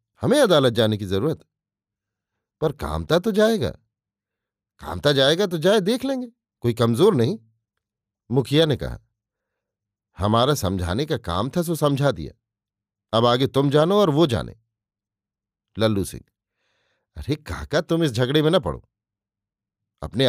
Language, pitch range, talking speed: Hindi, 105-145 Hz, 140 wpm